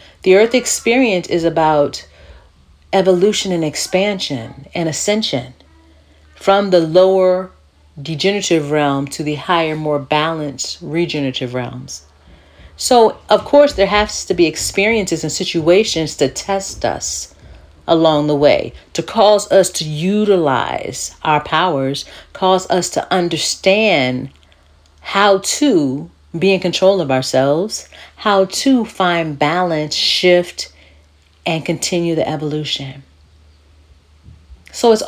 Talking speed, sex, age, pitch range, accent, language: 115 wpm, female, 40-59, 140-205 Hz, American, English